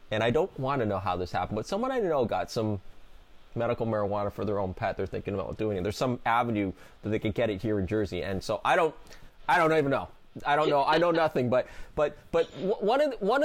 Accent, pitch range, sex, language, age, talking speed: American, 100-130 Hz, male, English, 20-39, 260 wpm